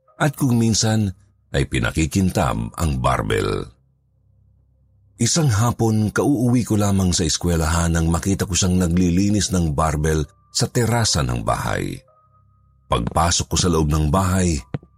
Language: Filipino